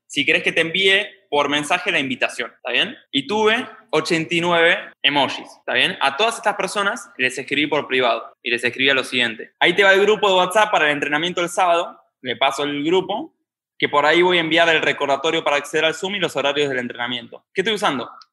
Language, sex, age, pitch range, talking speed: Spanish, male, 10-29, 150-210 Hz, 215 wpm